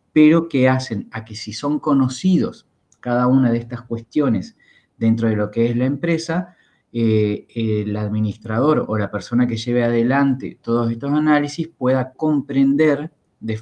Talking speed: 155 wpm